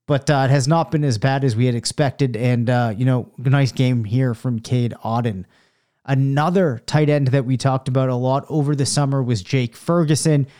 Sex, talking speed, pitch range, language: male, 210 wpm, 135-160 Hz, English